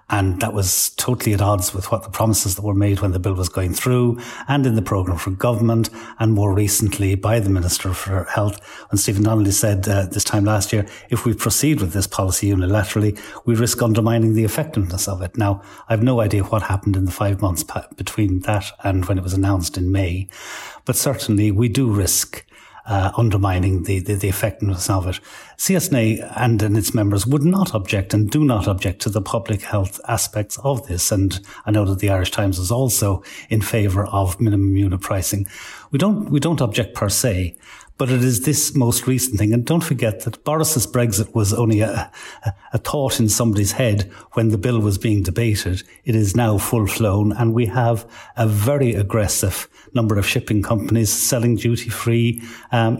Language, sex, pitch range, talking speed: English, male, 100-120 Hz, 200 wpm